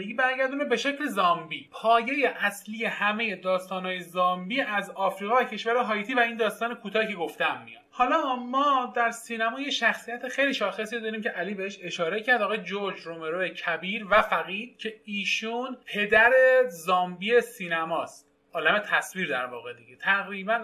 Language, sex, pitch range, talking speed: Persian, male, 175-230 Hz, 150 wpm